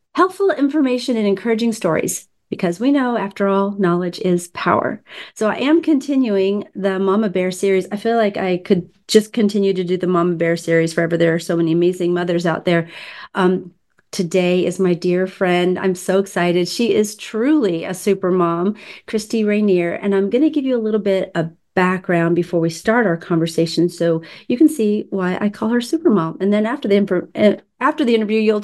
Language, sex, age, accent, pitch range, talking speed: English, female, 40-59, American, 175-220 Hz, 200 wpm